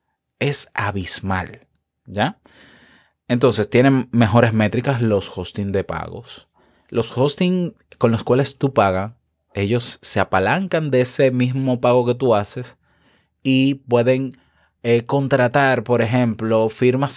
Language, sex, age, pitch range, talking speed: Spanish, male, 20-39, 100-130 Hz, 120 wpm